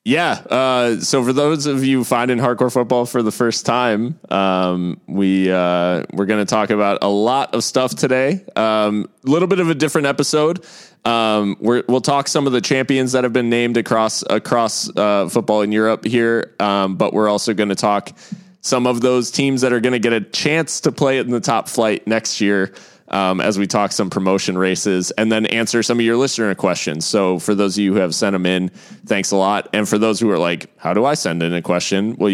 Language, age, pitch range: English, 20-39, 95-125 Hz